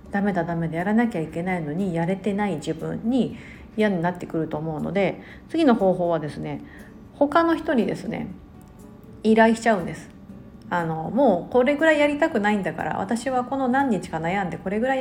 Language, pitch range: Japanese, 175-240 Hz